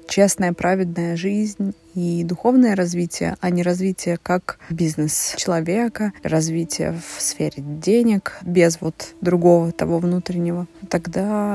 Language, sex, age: Russian, female, 20-39